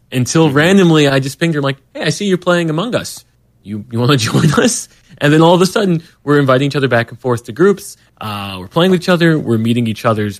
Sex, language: male, English